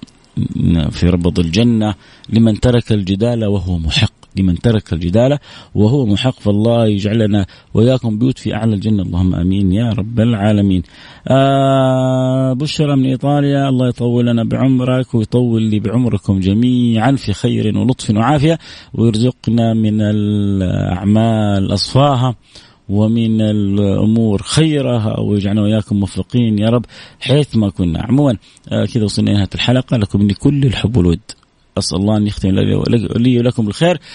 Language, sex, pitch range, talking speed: Arabic, male, 100-125 Hz, 125 wpm